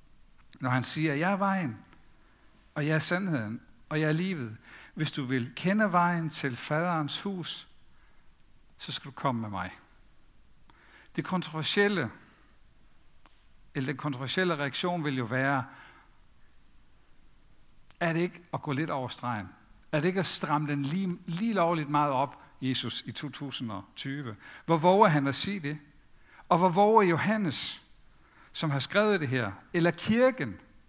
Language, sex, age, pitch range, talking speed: Danish, male, 60-79, 140-195 Hz, 150 wpm